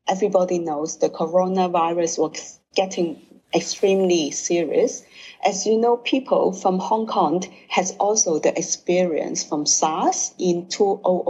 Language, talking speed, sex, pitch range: English, 125 wpm, female, 175-220 Hz